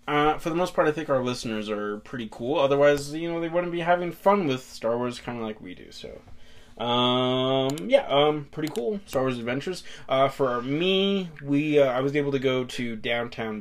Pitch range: 110-140 Hz